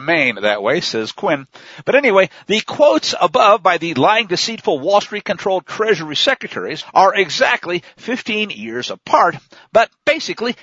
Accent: American